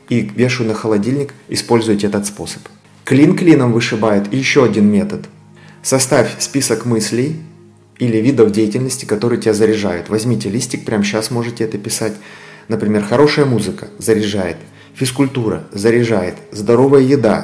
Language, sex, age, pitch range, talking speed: Russian, male, 30-49, 110-140 Hz, 125 wpm